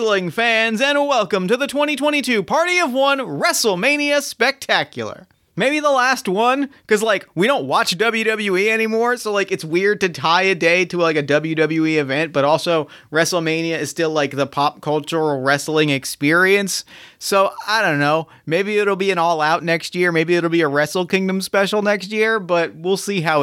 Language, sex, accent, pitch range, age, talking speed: English, male, American, 165-230 Hz, 30-49, 180 wpm